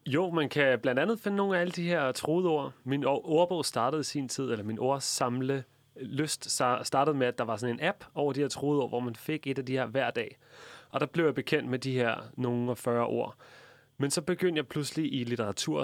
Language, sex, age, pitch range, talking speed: Danish, male, 30-49, 125-155 Hz, 240 wpm